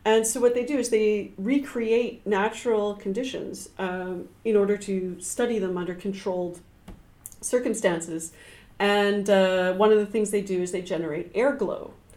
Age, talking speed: 40-59, 160 wpm